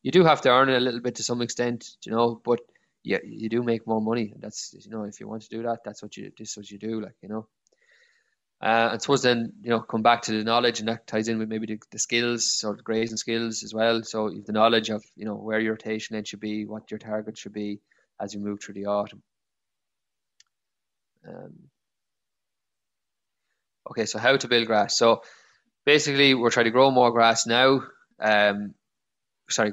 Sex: male